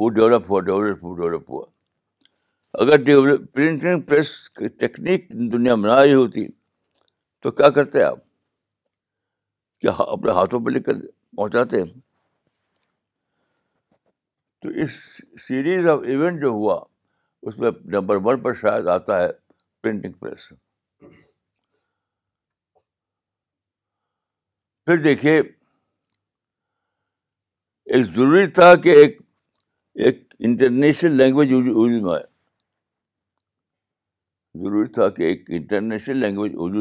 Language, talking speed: Urdu, 85 wpm